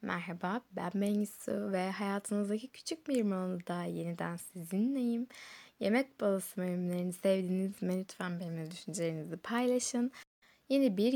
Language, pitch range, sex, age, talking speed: Turkish, 175-230 Hz, female, 10-29, 110 wpm